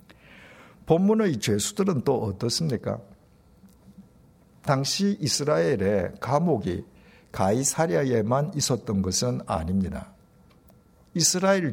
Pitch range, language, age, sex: 105-170 Hz, Korean, 60-79, male